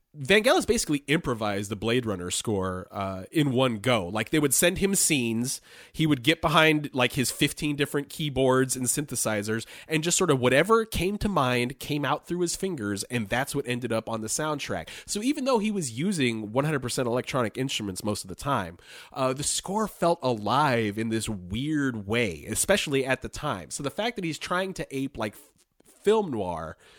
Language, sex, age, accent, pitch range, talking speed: English, male, 30-49, American, 110-145 Hz, 195 wpm